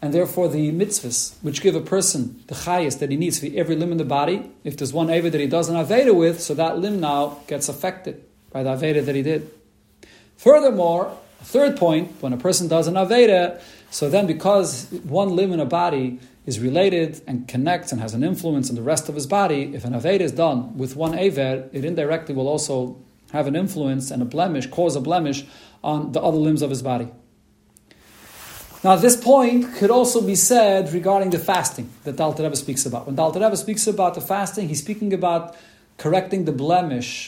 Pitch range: 140-190 Hz